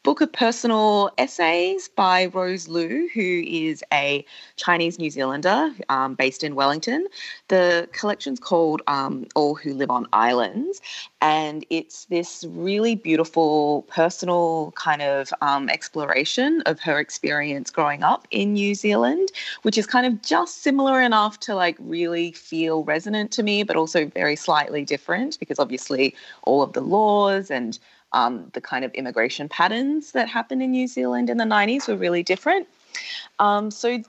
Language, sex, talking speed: English, female, 155 wpm